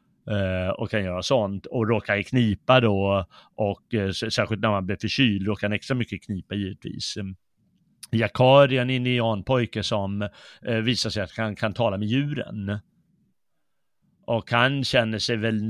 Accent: native